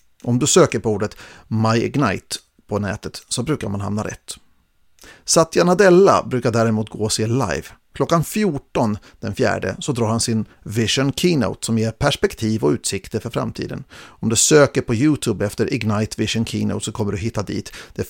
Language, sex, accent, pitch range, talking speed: Swedish, male, native, 110-140 Hz, 180 wpm